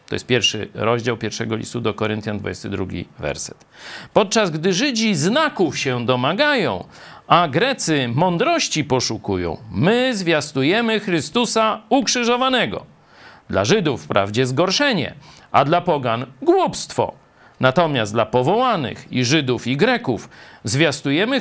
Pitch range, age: 125-195 Hz, 50-69